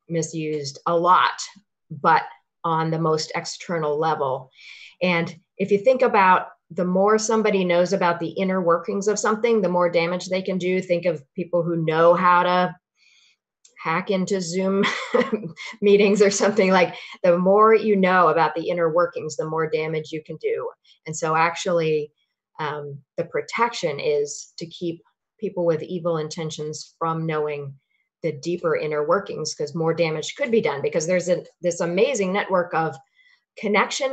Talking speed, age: 160 wpm, 40-59